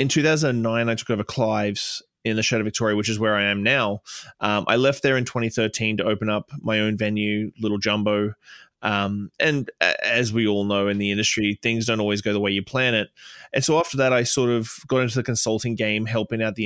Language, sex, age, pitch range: English, male, 20-39, 105-115 Hz